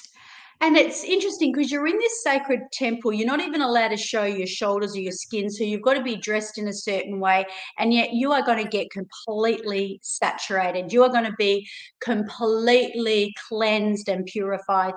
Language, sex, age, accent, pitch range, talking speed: English, female, 40-59, Australian, 205-255 Hz, 190 wpm